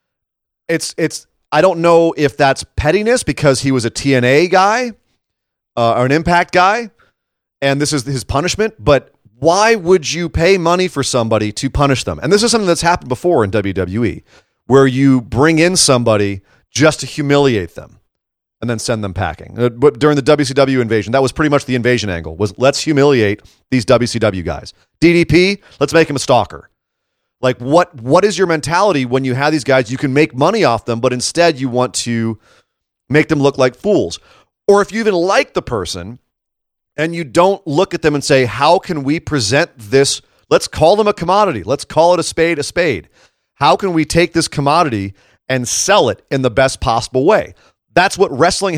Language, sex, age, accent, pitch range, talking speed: English, male, 30-49, American, 125-170 Hz, 195 wpm